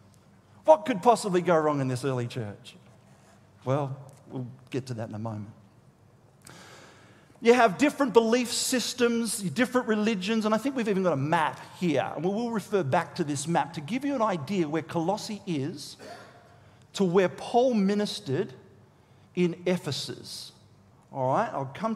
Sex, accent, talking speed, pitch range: male, Australian, 160 wpm, 145-220 Hz